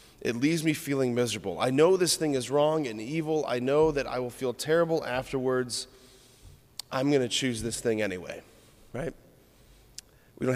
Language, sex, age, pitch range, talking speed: English, male, 30-49, 110-135 Hz, 175 wpm